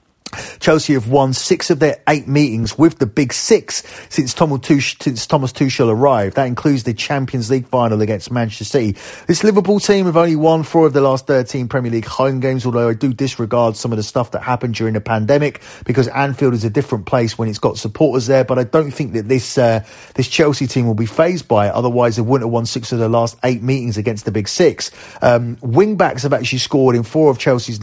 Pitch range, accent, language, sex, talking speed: 115-140 Hz, British, English, male, 220 wpm